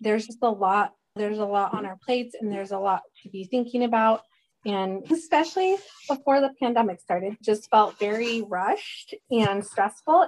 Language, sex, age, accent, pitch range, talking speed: English, female, 20-39, American, 210-265 Hz, 175 wpm